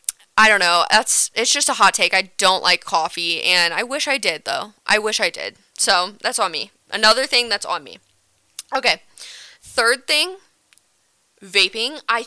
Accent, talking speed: American, 180 wpm